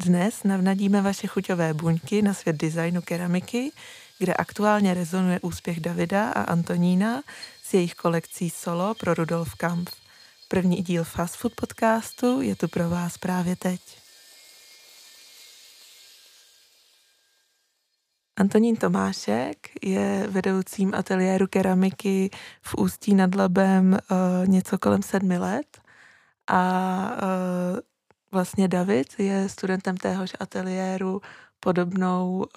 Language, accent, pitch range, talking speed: Czech, native, 180-195 Hz, 105 wpm